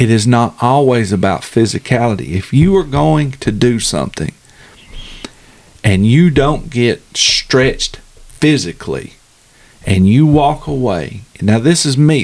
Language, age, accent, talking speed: English, 50-69, American, 130 wpm